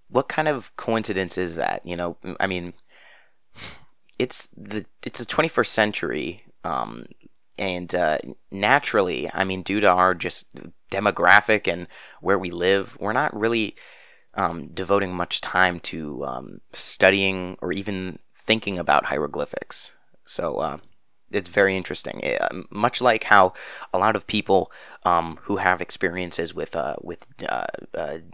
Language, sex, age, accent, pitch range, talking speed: English, male, 30-49, American, 90-100 Hz, 145 wpm